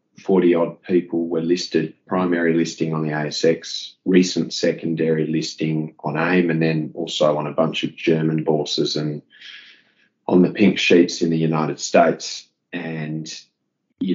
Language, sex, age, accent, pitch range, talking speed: English, male, 30-49, Australian, 80-85 Hz, 150 wpm